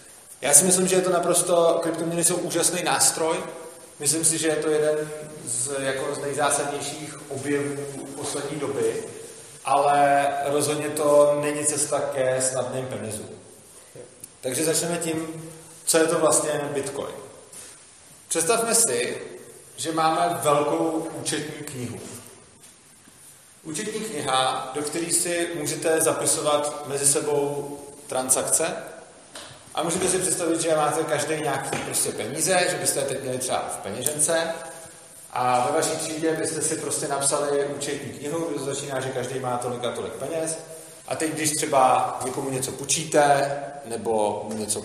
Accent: native